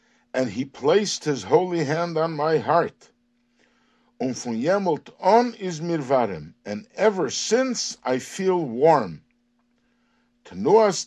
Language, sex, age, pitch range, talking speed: English, male, 60-79, 135-220 Hz, 110 wpm